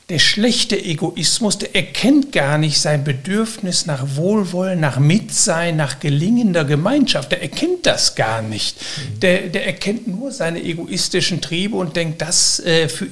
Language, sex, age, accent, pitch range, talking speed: German, male, 60-79, German, 140-185 Hz, 145 wpm